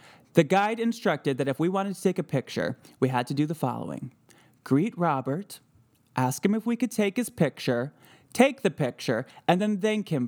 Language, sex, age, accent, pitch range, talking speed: English, male, 20-39, American, 130-190 Hz, 200 wpm